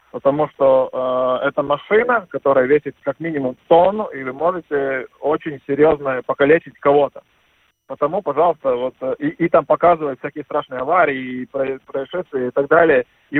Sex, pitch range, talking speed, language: male, 135-170 Hz, 150 wpm, Russian